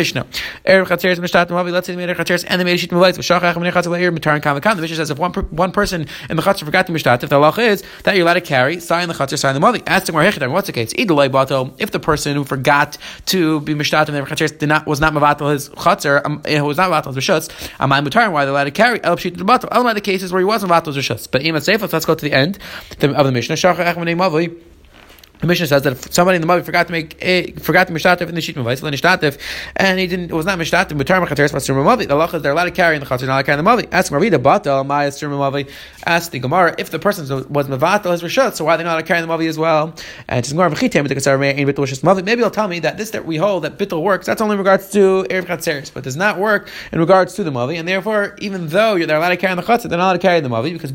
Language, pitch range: English, 145-185 Hz